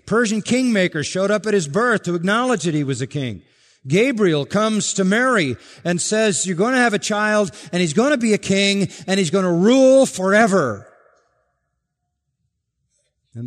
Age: 50-69